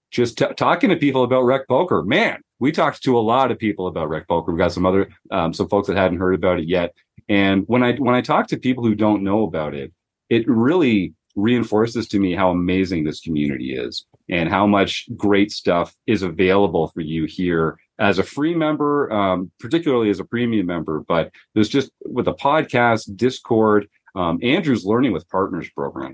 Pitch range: 85-115 Hz